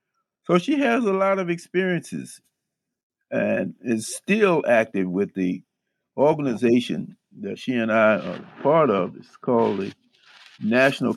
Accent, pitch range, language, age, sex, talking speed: American, 120-175 Hz, English, 50-69, male, 135 wpm